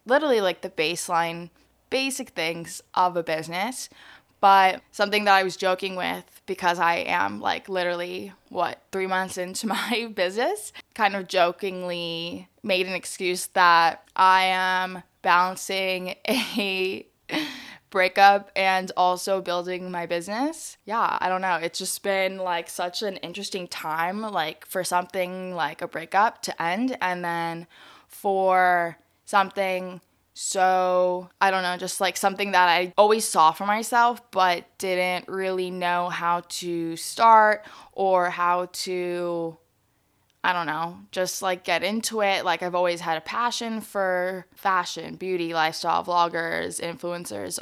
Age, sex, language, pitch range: 10-29, female, English, 175-195 Hz